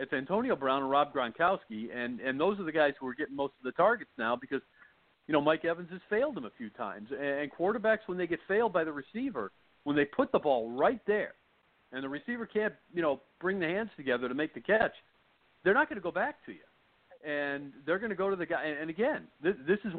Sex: male